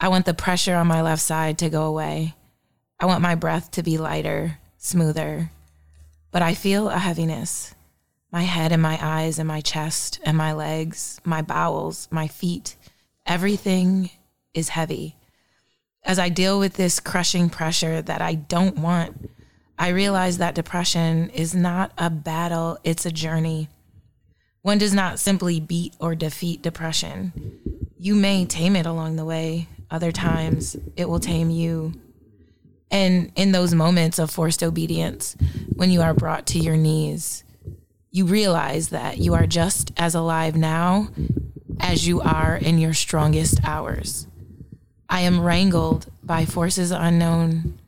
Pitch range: 155-180 Hz